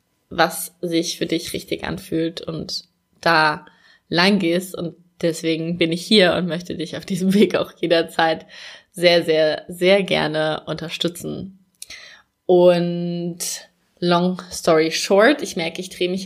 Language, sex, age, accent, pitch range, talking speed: German, female, 20-39, German, 170-195 Hz, 135 wpm